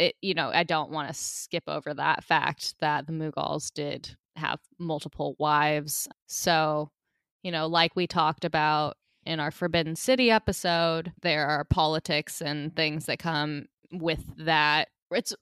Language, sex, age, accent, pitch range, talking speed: English, female, 20-39, American, 150-180 Hz, 150 wpm